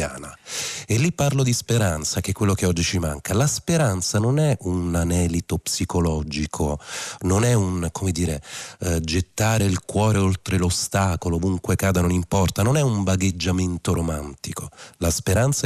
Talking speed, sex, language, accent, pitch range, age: 155 wpm, male, Italian, native, 85-105 Hz, 40-59